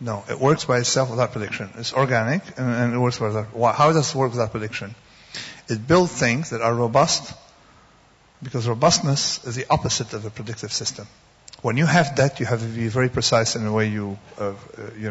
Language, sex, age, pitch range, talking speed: English, male, 50-69, 110-130 Hz, 205 wpm